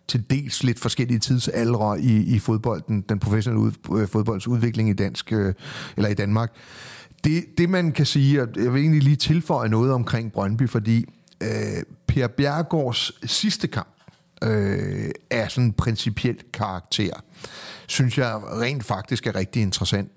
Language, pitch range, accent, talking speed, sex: Danish, 105-130 Hz, native, 155 wpm, male